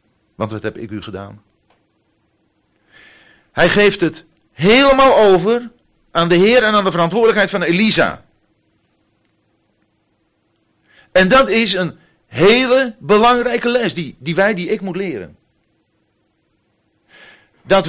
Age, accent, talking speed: 50-69, Dutch, 115 wpm